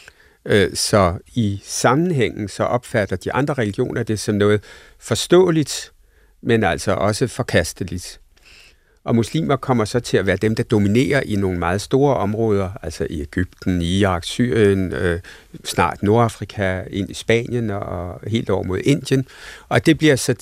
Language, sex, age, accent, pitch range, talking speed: Danish, male, 60-79, native, 95-120 Hz, 150 wpm